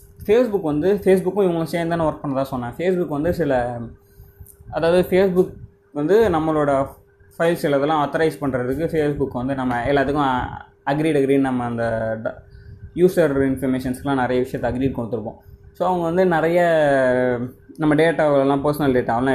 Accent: native